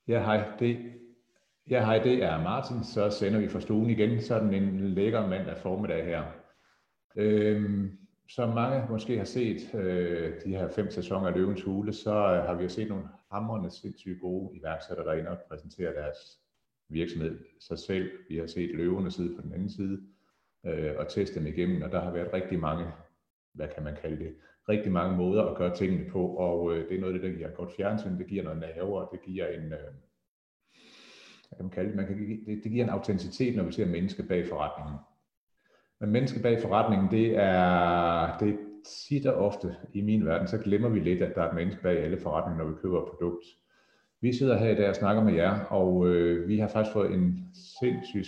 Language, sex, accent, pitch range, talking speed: English, male, Danish, 85-110 Hz, 210 wpm